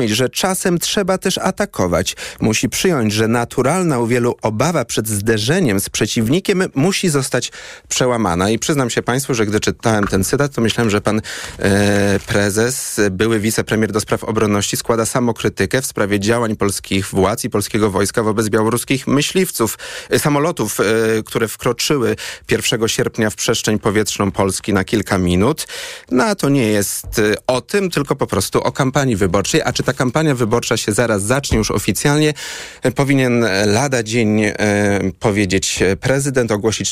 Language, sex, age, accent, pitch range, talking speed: Polish, male, 30-49, native, 100-130 Hz, 150 wpm